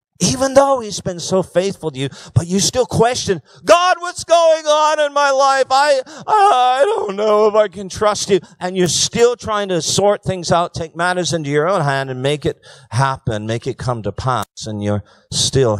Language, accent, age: English, American, 50-69